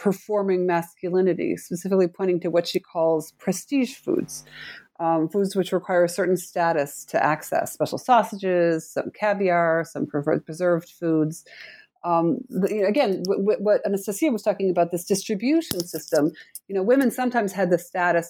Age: 40-59